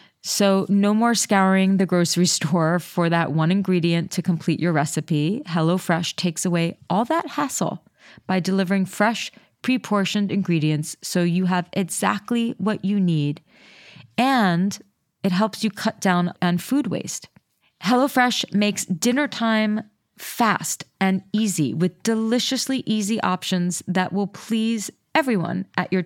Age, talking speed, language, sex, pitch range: 30-49, 135 wpm, English, female, 180-220 Hz